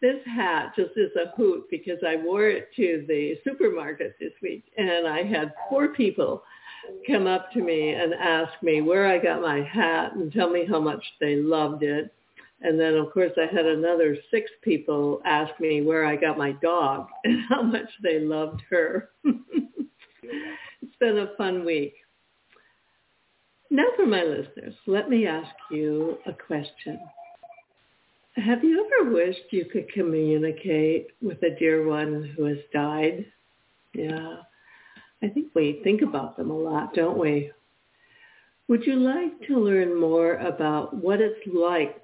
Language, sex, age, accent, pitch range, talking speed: English, female, 60-79, American, 155-240 Hz, 160 wpm